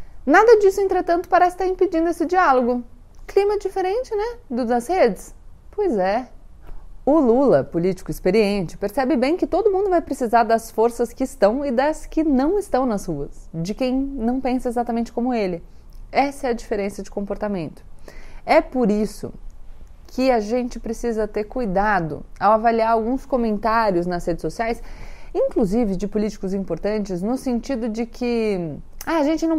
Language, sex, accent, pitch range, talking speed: Portuguese, female, Brazilian, 190-270 Hz, 160 wpm